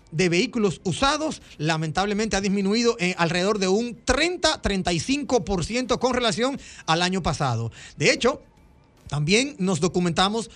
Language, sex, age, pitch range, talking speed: Spanish, male, 30-49, 190-245 Hz, 115 wpm